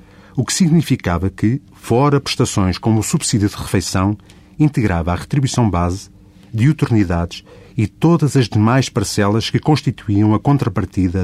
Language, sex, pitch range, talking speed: Portuguese, male, 95-120 Hz, 140 wpm